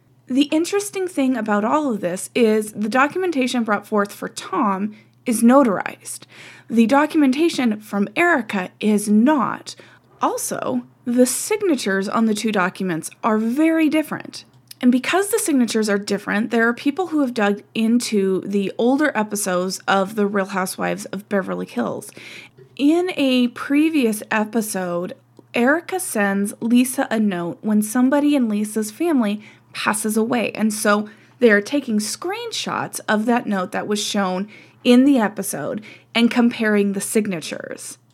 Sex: female